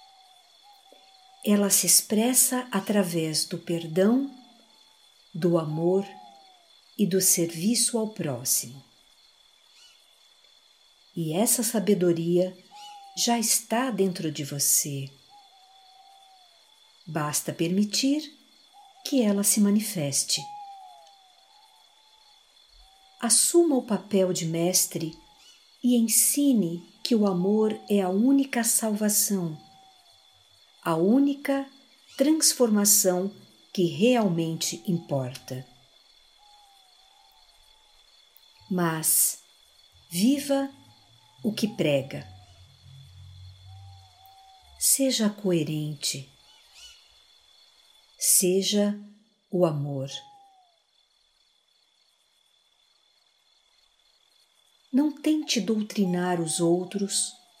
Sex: female